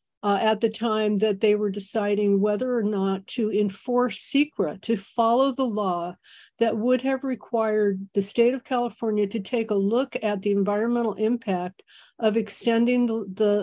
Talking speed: 165 wpm